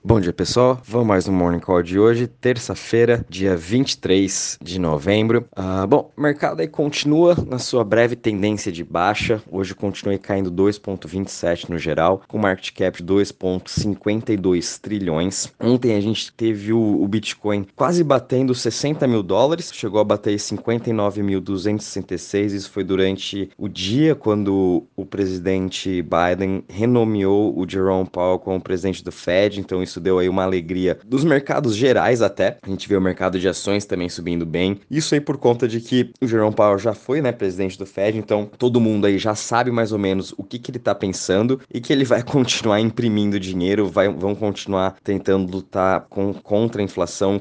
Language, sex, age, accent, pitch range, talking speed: Portuguese, male, 20-39, Brazilian, 95-110 Hz, 170 wpm